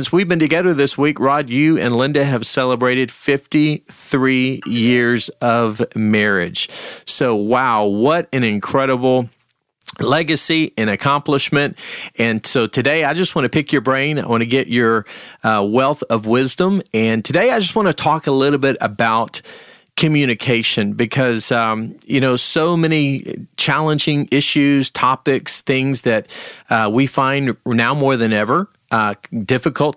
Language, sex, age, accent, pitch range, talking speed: English, male, 40-59, American, 115-140 Hz, 150 wpm